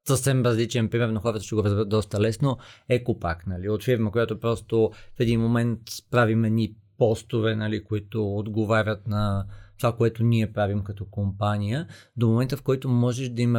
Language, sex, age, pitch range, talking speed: Bulgarian, male, 30-49, 110-130 Hz, 170 wpm